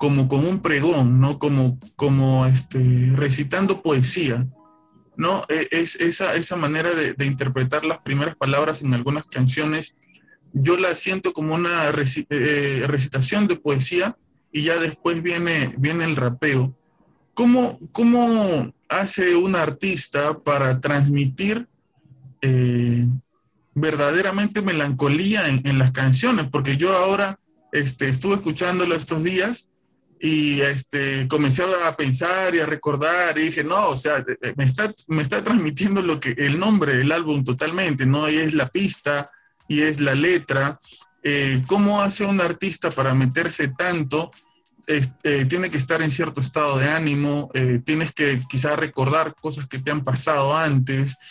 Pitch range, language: 135-170 Hz, Spanish